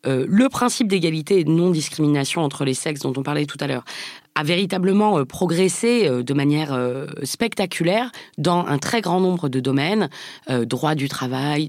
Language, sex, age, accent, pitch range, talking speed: French, female, 20-39, French, 140-180 Hz, 185 wpm